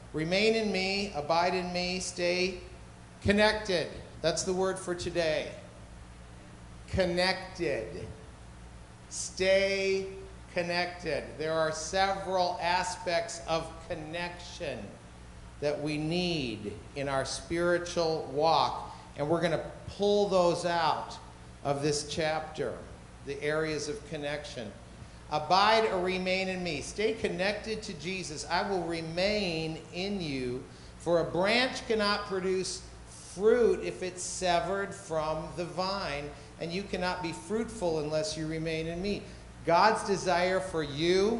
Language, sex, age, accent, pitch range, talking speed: English, male, 50-69, American, 130-185 Hz, 120 wpm